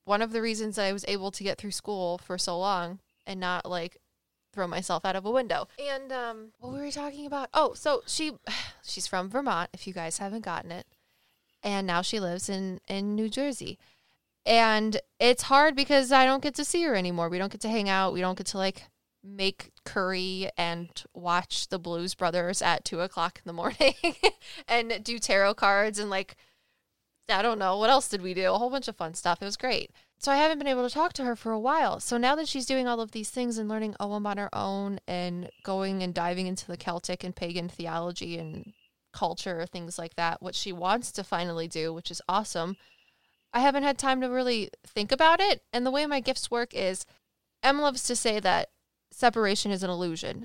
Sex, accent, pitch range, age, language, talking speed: female, American, 180-240 Hz, 10-29, English, 220 wpm